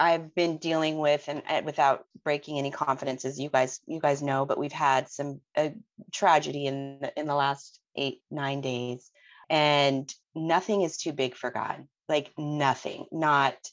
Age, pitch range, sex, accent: 30-49, 135-155 Hz, female, American